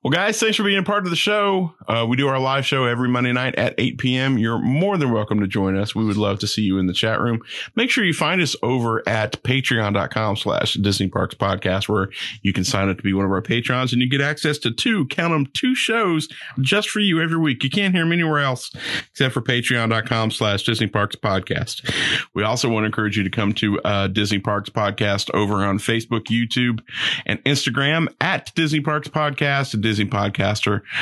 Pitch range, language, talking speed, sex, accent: 105-150 Hz, English, 230 wpm, male, American